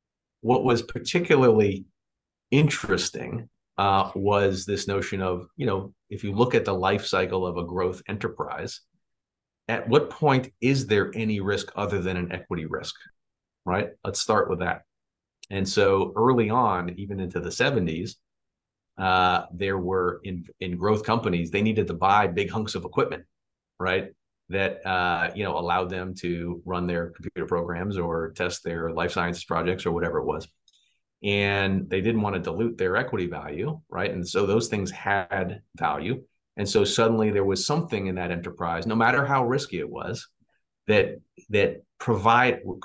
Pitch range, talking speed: 90-110 Hz, 165 wpm